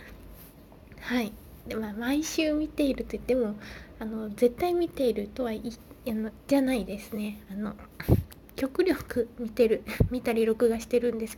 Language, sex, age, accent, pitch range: Japanese, female, 20-39, native, 220-255 Hz